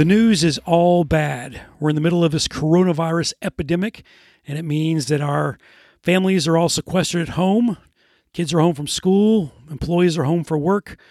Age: 40-59